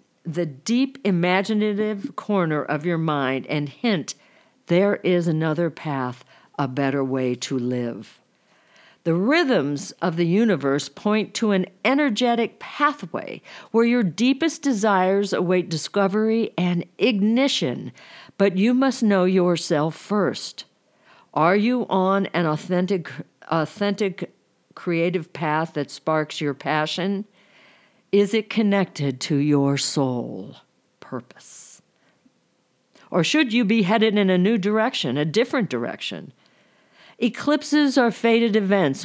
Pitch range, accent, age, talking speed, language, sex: 150-215 Hz, American, 50-69, 120 wpm, English, female